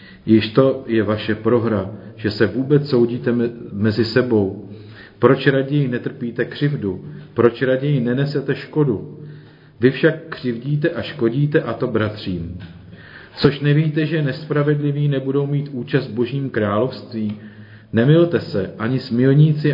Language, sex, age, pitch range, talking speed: Czech, male, 40-59, 110-140 Hz, 125 wpm